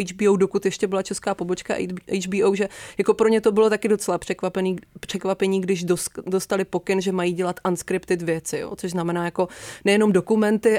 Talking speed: 170 wpm